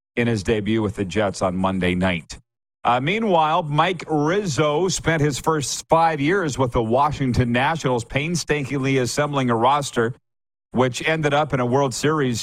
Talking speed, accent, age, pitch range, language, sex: 160 wpm, American, 40-59, 115-145 Hz, English, male